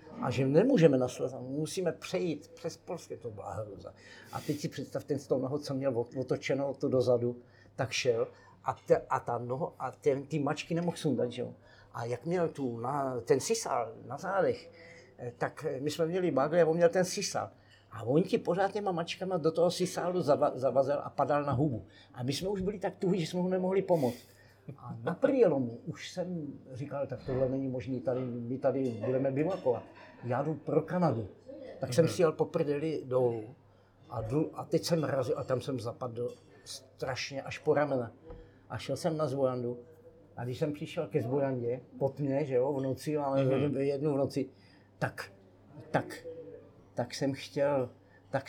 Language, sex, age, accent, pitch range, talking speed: Czech, male, 50-69, native, 125-165 Hz, 185 wpm